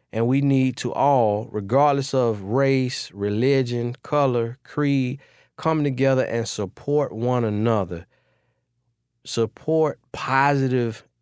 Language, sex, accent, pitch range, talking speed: English, male, American, 110-135 Hz, 100 wpm